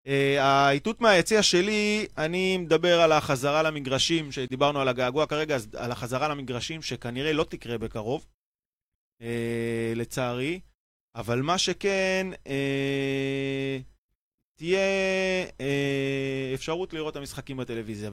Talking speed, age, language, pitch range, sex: 110 wpm, 20-39, Hebrew, 115-145 Hz, male